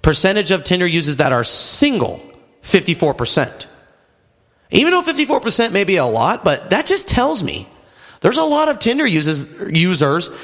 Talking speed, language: 150 wpm, English